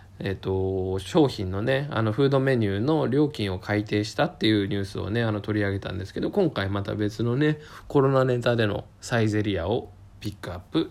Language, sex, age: Japanese, male, 20-39